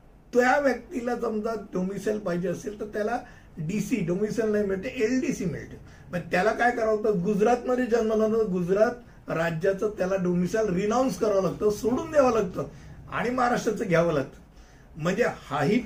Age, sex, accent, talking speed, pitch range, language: 50-69, male, native, 95 wpm, 170-225 Hz, Hindi